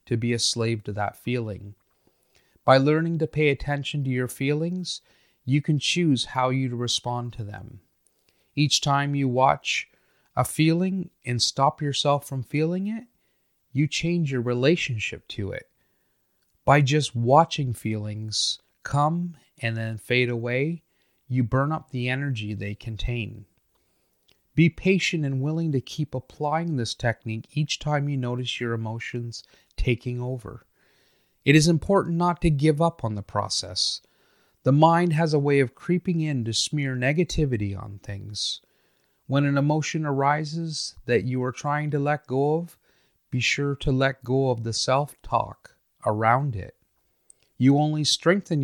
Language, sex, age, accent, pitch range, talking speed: English, male, 30-49, American, 115-150 Hz, 150 wpm